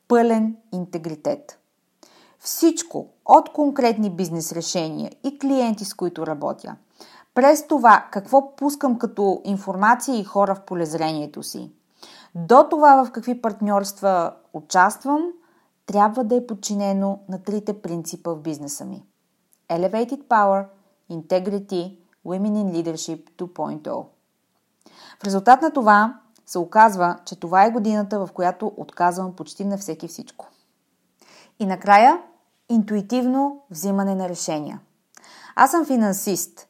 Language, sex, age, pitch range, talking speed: Bulgarian, female, 30-49, 180-235 Hz, 120 wpm